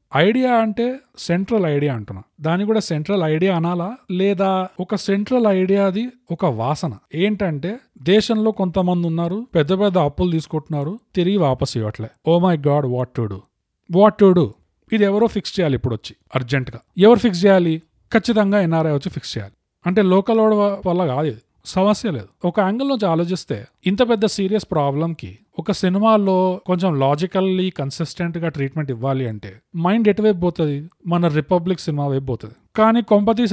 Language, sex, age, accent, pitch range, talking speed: Telugu, male, 40-59, native, 145-205 Hz, 145 wpm